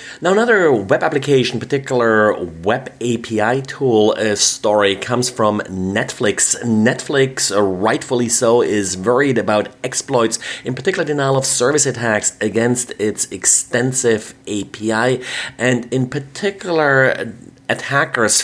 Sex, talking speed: male, 110 wpm